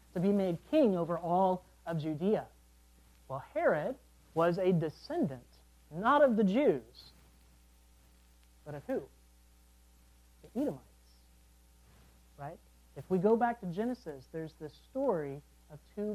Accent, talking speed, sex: American, 125 wpm, male